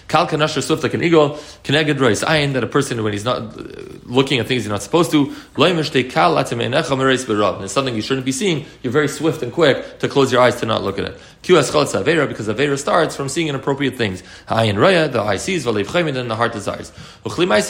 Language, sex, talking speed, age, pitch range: English, male, 250 wpm, 30-49, 115-160 Hz